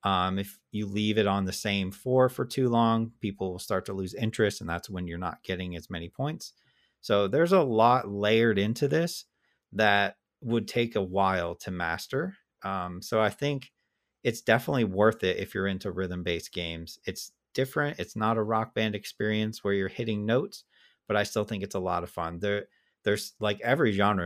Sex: male